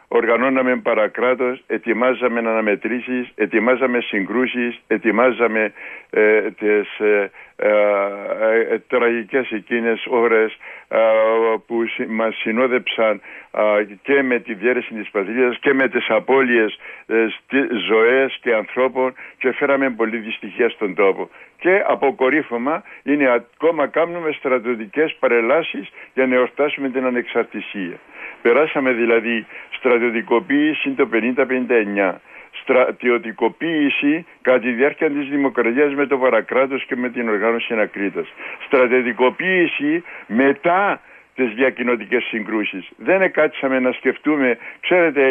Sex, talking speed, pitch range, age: male, 110 wpm, 115-140 Hz, 60-79